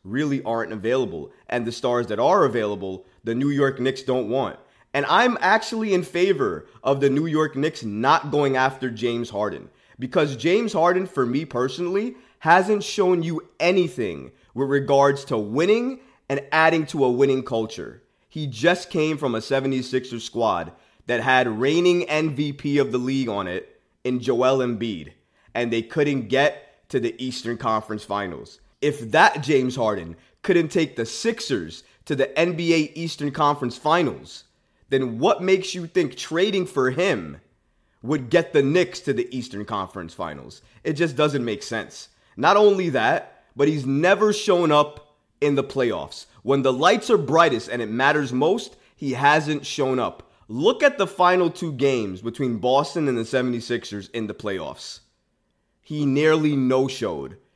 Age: 20-39